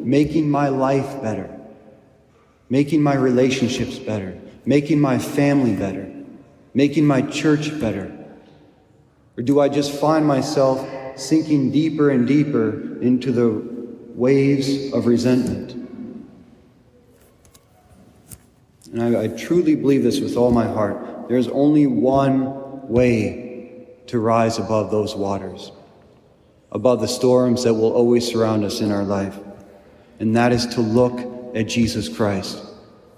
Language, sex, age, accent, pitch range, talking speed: English, male, 40-59, American, 115-140 Hz, 125 wpm